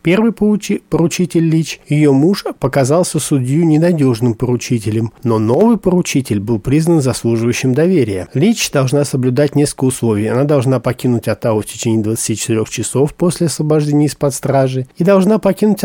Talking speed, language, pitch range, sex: 135 wpm, Russian, 120-155 Hz, male